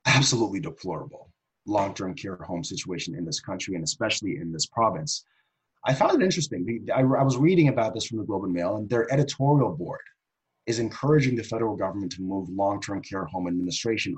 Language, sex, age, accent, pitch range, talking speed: English, male, 30-49, American, 95-140 Hz, 180 wpm